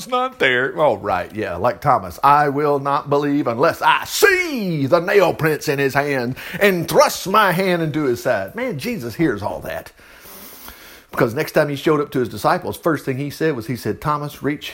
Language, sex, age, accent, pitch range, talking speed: English, male, 50-69, American, 115-195 Hz, 205 wpm